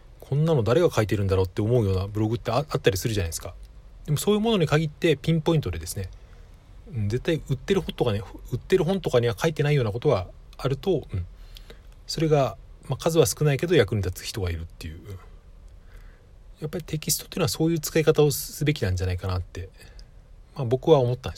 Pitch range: 95-145 Hz